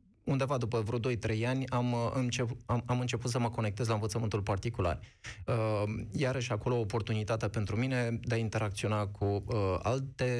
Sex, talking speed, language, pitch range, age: male, 145 wpm, Romanian, 110-140 Hz, 20-39